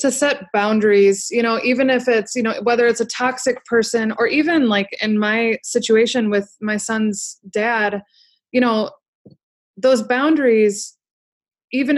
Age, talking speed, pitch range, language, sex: 20-39, 150 wpm, 205-250 Hz, English, female